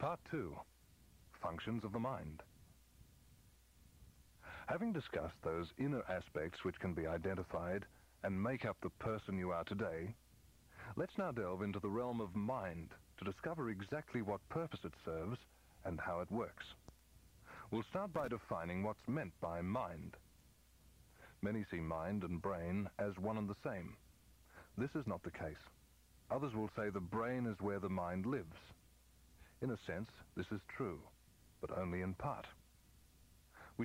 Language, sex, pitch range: English, male, 85-110 Hz